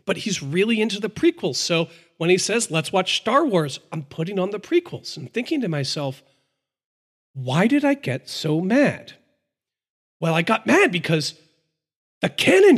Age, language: 40-59, English